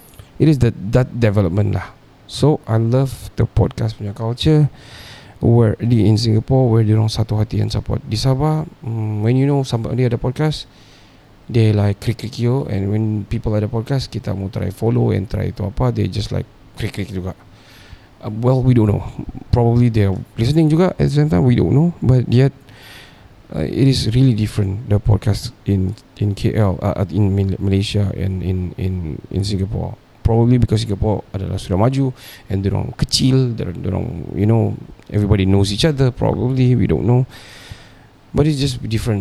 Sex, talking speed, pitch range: male, 185 wpm, 100-125 Hz